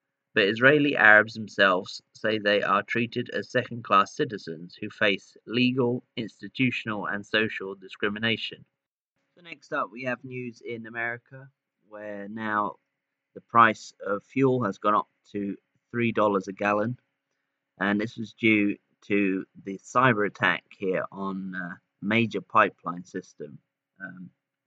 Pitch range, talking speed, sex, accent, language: 100-120 Hz, 130 wpm, male, British, English